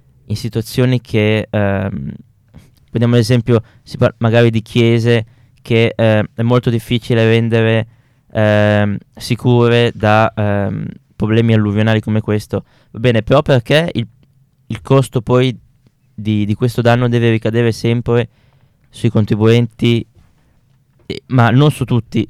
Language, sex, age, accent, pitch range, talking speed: Italian, male, 20-39, native, 110-130 Hz, 120 wpm